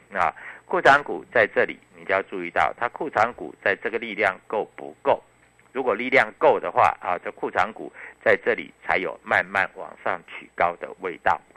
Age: 50-69